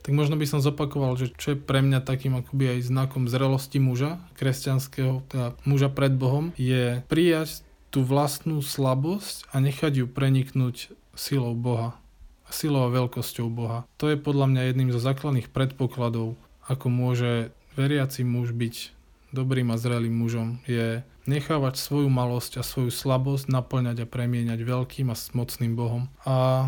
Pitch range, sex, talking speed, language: 125-140 Hz, male, 155 wpm, Slovak